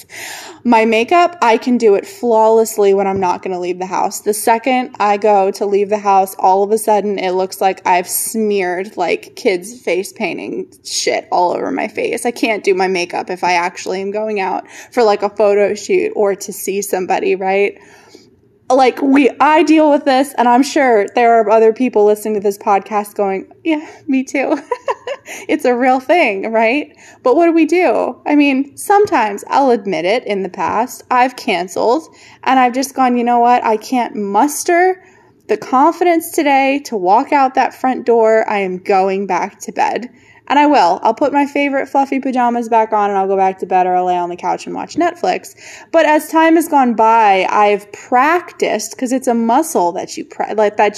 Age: 20-39